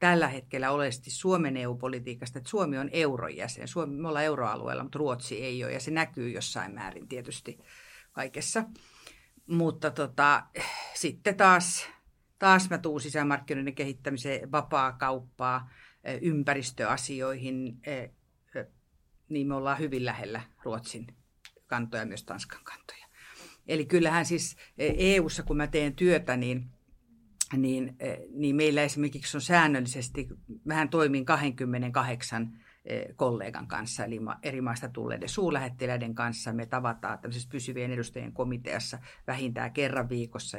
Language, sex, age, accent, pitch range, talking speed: Finnish, female, 50-69, native, 125-150 Hz, 120 wpm